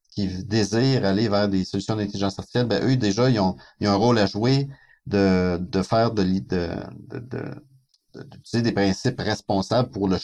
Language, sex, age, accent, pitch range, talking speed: French, male, 50-69, Canadian, 95-125 Hz, 200 wpm